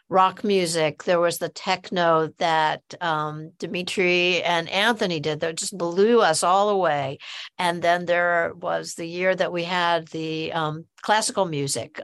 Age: 60-79